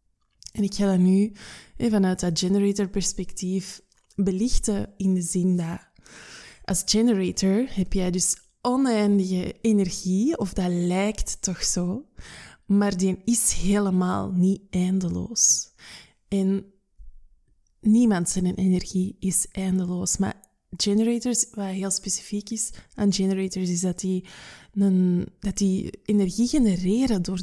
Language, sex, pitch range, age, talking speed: Dutch, female, 185-210 Hz, 20-39, 120 wpm